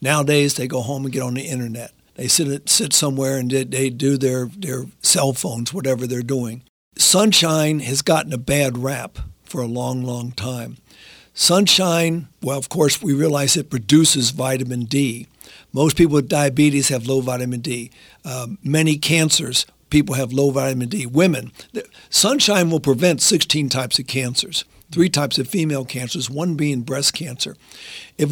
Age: 60-79